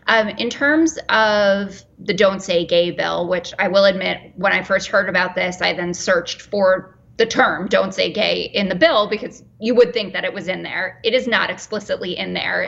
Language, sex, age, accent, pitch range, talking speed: English, female, 20-39, American, 185-225 Hz, 220 wpm